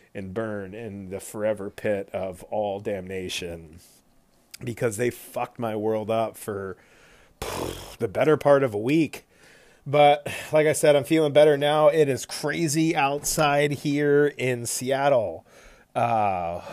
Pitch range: 115-145 Hz